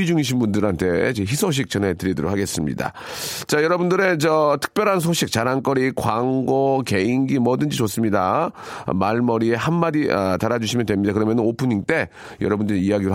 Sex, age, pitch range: male, 40-59, 105-150 Hz